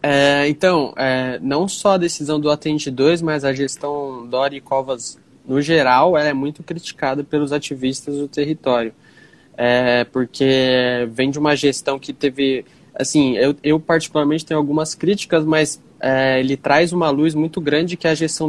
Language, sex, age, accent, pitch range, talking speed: Portuguese, male, 20-39, Brazilian, 135-165 Hz, 170 wpm